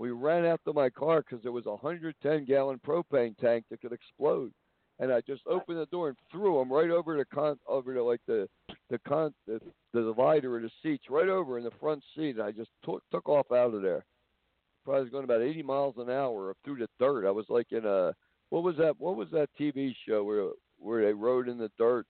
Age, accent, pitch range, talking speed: 60-79, American, 115-150 Hz, 235 wpm